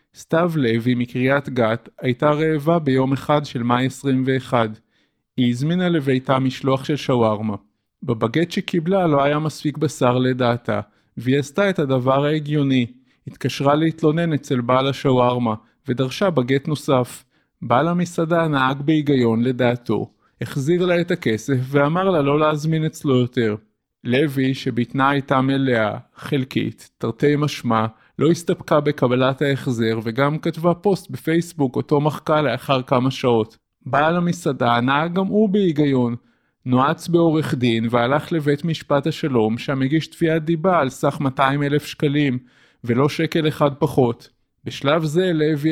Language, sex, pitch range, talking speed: Hebrew, male, 125-160 Hz, 130 wpm